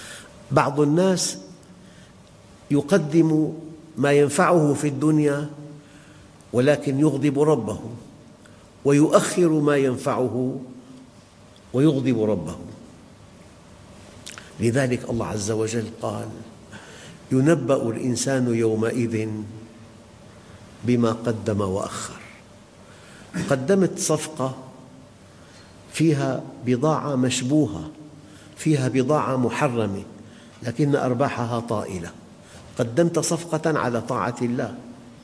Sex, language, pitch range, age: male, English, 115-155 Hz, 50-69